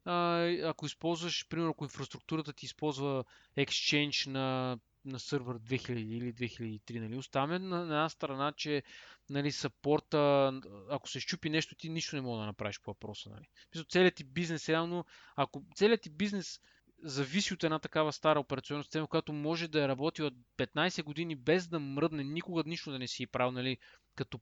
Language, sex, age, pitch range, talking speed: Bulgarian, male, 20-39, 135-180 Hz, 170 wpm